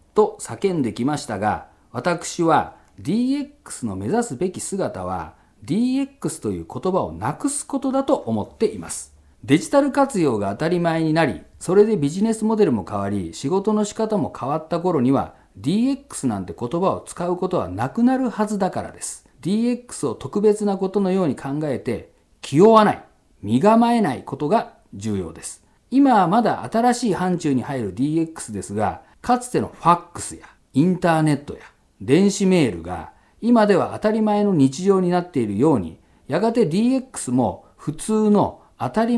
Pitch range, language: 135-220 Hz, Japanese